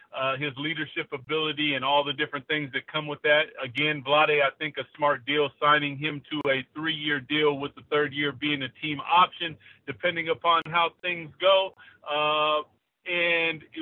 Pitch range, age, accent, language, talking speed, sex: 145-165 Hz, 40-59, American, English, 180 wpm, male